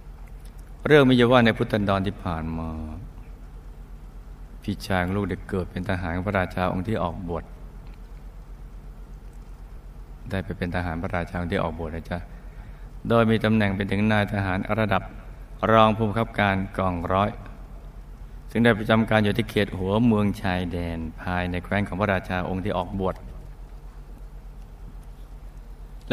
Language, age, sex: Thai, 60-79, male